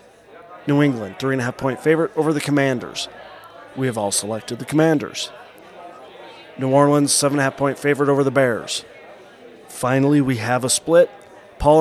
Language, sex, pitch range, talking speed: English, male, 125-150 Hz, 130 wpm